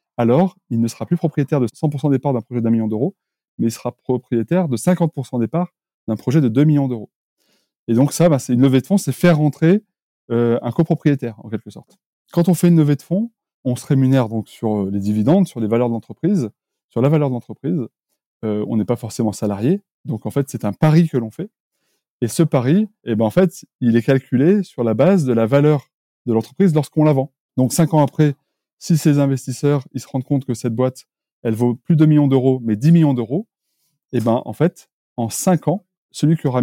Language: French